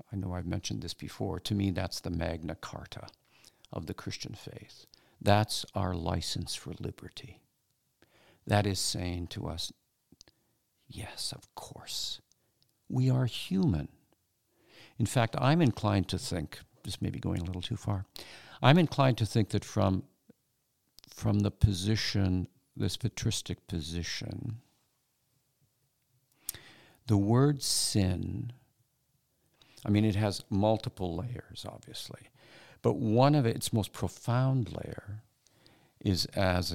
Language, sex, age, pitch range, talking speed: English, male, 50-69, 95-130 Hz, 125 wpm